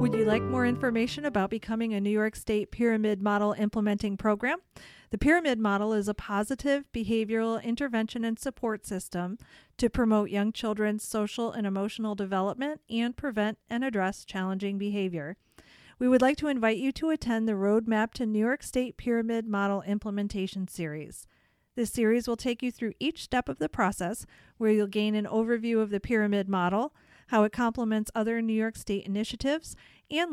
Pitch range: 205-240 Hz